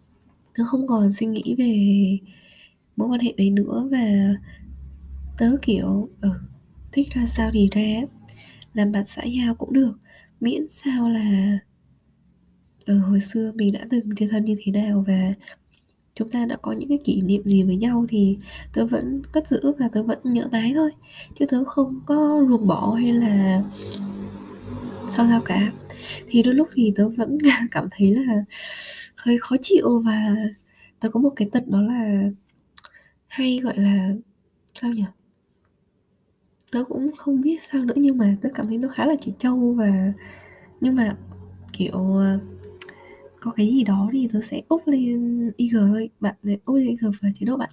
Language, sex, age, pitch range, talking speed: Vietnamese, female, 20-39, 200-250 Hz, 175 wpm